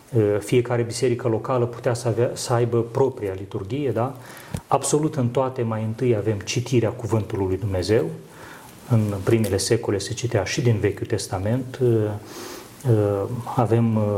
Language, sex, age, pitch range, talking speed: Romanian, male, 30-49, 110-125 Hz, 125 wpm